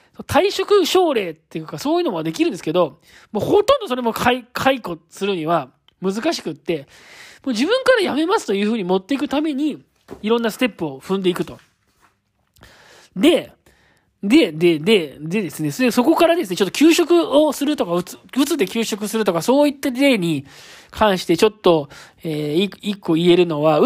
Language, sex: Japanese, male